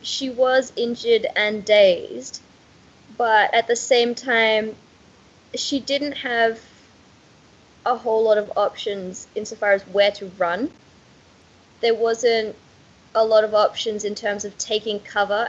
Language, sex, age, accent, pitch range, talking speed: English, female, 20-39, Australian, 195-230 Hz, 130 wpm